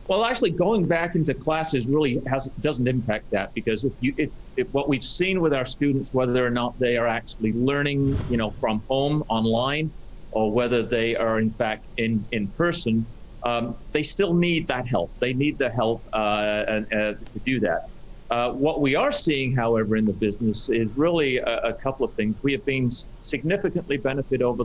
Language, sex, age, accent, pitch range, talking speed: English, male, 40-59, American, 115-135 Hz, 195 wpm